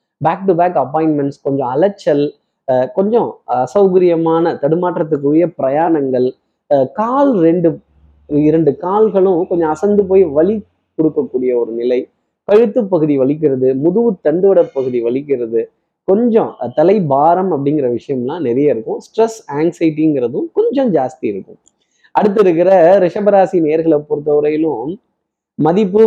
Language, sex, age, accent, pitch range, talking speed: Tamil, male, 20-39, native, 140-190 Hz, 110 wpm